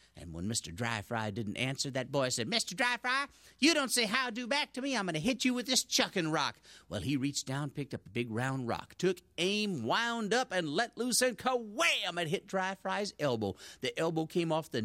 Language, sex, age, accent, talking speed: English, male, 50-69, American, 235 wpm